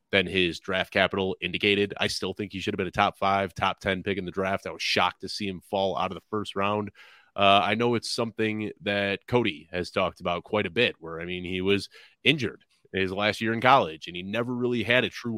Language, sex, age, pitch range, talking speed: English, male, 30-49, 95-120 Hz, 250 wpm